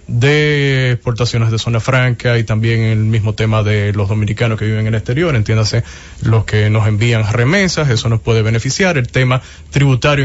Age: 20-39